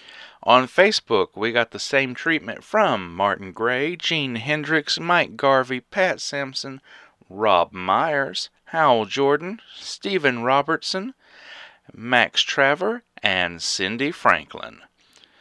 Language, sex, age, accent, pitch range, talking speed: English, male, 40-59, American, 105-155 Hz, 105 wpm